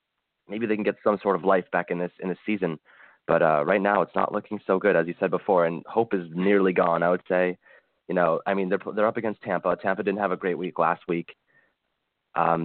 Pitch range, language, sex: 90-105 Hz, English, male